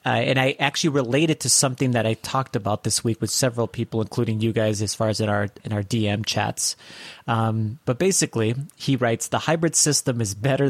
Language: English